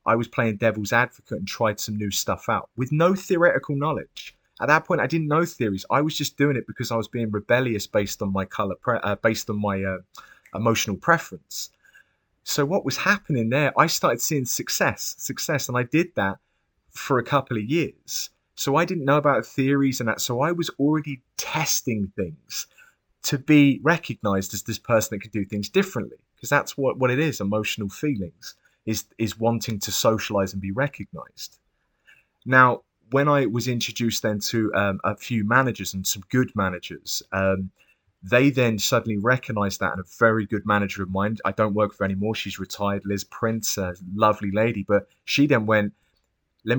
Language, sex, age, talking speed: English, male, 30-49, 190 wpm